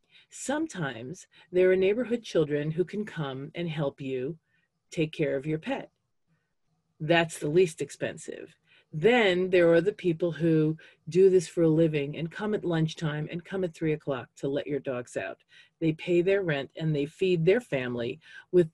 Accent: American